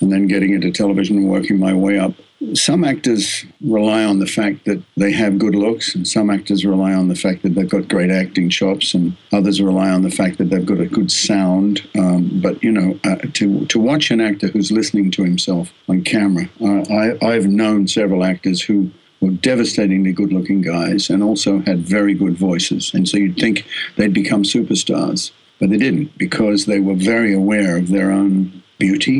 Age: 60-79